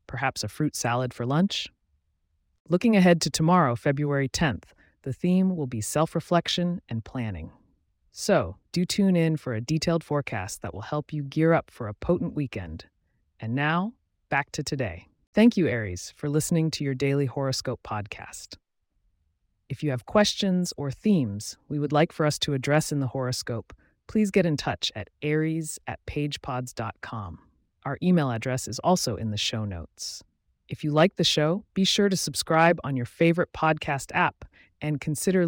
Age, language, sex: 30-49, English, female